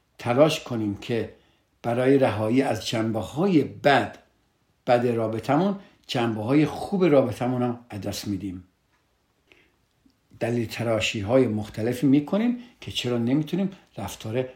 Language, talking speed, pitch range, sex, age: Persian, 100 wpm, 105-135 Hz, male, 60-79